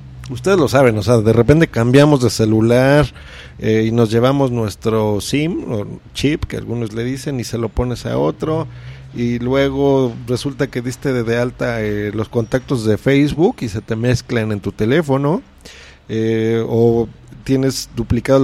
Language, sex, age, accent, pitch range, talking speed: Spanish, male, 40-59, Mexican, 115-145 Hz, 165 wpm